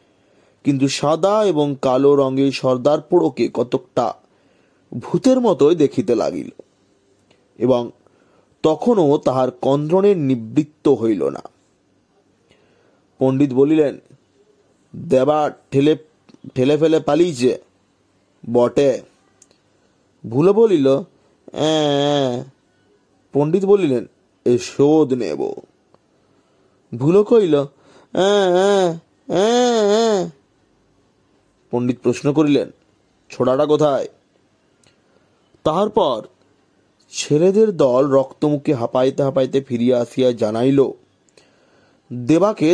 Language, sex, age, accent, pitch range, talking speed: Bengali, male, 30-49, native, 130-180 Hz, 75 wpm